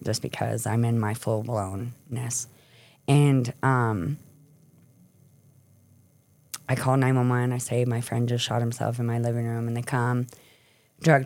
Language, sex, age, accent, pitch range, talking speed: English, female, 30-49, American, 120-140 Hz, 140 wpm